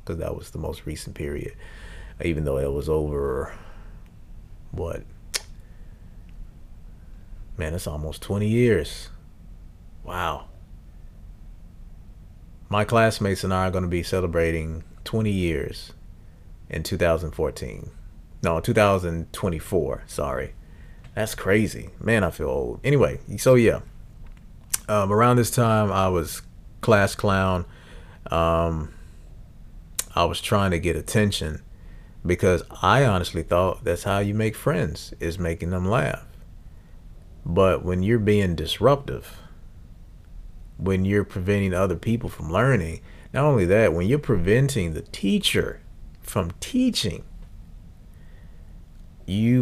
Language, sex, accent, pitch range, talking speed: English, male, American, 85-105 Hz, 115 wpm